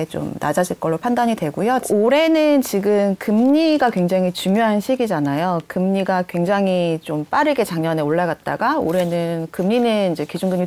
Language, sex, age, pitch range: Korean, female, 30-49, 175-260 Hz